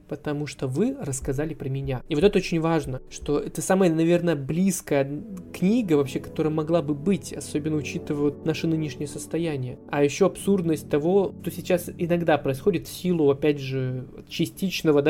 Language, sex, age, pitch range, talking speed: Russian, male, 20-39, 145-180 Hz, 160 wpm